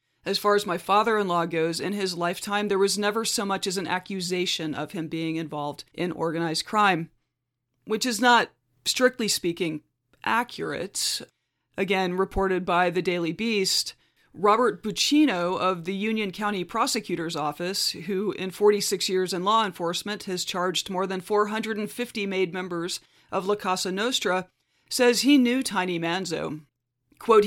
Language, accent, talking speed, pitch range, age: English, American, 150 wpm, 170-215 Hz, 40-59